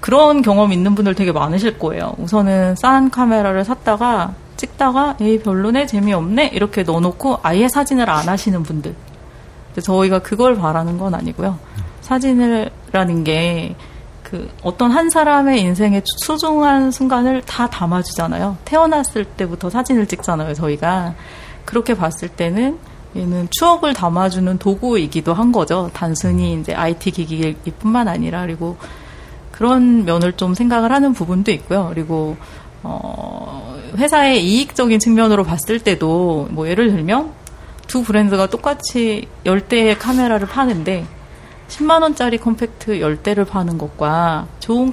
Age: 40-59